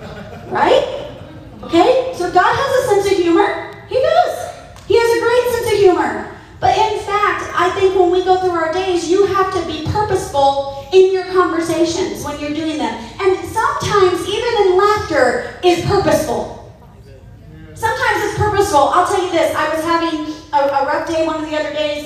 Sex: female